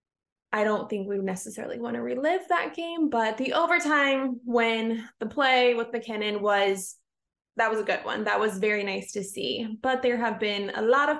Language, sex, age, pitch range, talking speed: English, female, 20-39, 220-270 Hz, 200 wpm